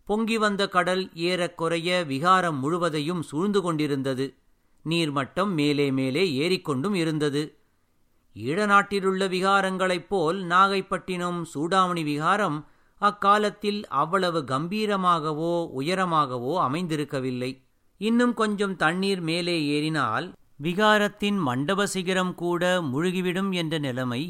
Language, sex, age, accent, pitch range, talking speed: Tamil, male, 50-69, native, 145-190 Hz, 90 wpm